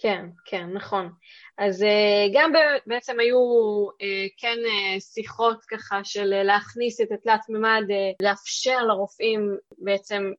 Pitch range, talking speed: 195-240 Hz, 105 wpm